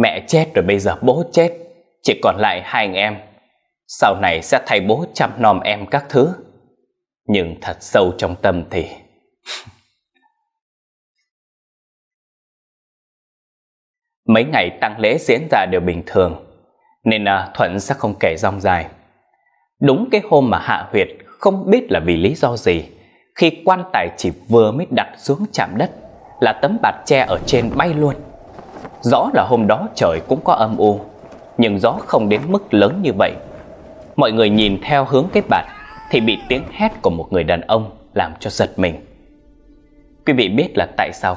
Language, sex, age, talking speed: Vietnamese, male, 20-39, 175 wpm